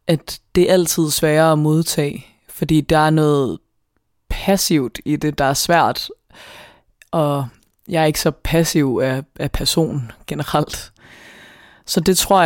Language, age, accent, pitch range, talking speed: Danish, 20-39, native, 145-180 Hz, 145 wpm